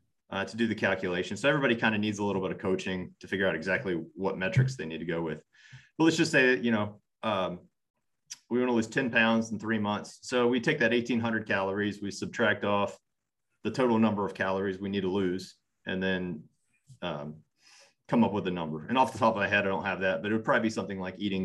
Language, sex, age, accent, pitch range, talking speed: English, male, 30-49, American, 95-115 Hz, 245 wpm